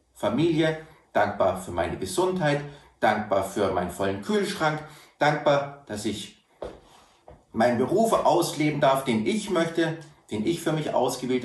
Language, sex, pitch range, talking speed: German, male, 110-165 Hz, 130 wpm